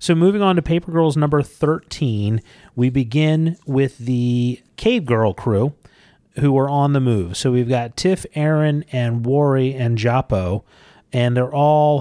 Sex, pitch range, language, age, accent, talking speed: male, 110-135 Hz, English, 30-49, American, 160 wpm